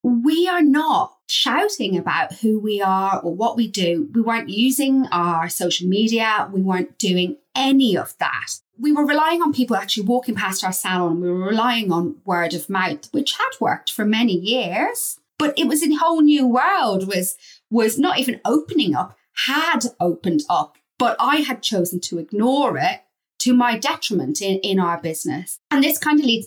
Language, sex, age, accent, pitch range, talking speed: English, female, 30-49, British, 190-275 Hz, 185 wpm